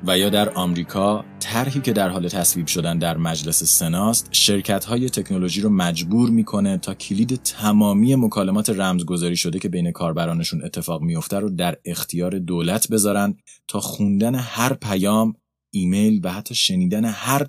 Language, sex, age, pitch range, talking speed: Persian, male, 30-49, 85-110 Hz, 150 wpm